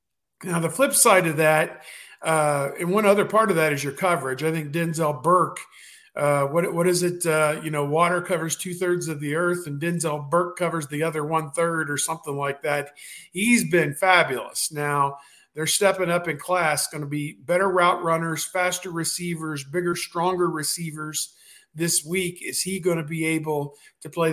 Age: 50-69